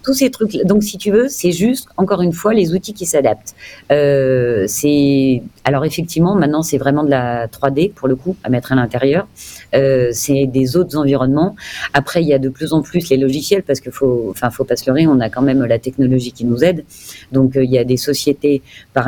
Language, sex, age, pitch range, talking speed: French, female, 40-59, 130-160 Hz, 230 wpm